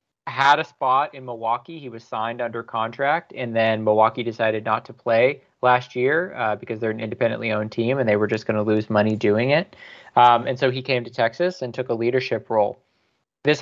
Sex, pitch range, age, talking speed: male, 115-125 Hz, 20-39, 215 wpm